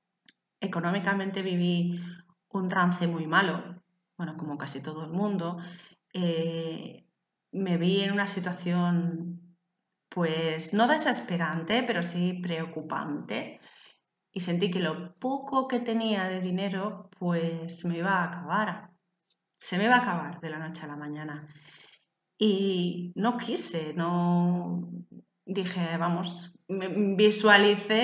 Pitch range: 170-200 Hz